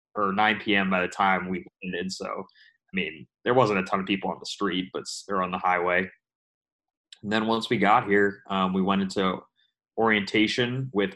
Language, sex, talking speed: English, male, 200 wpm